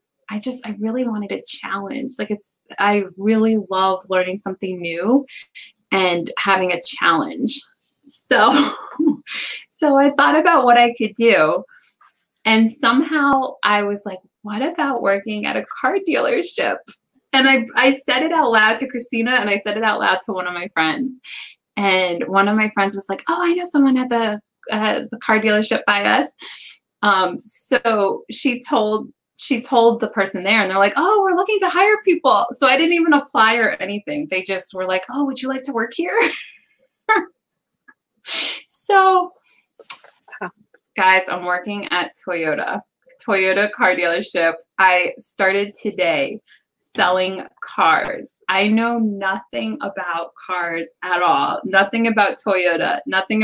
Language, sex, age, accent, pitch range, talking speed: English, female, 20-39, American, 195-270 Hz, 155 wpm